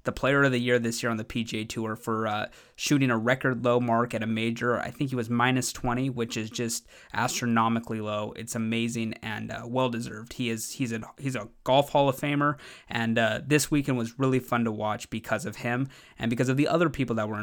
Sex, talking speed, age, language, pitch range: male, 235 wpm, 20-39, English, 115-135 Hz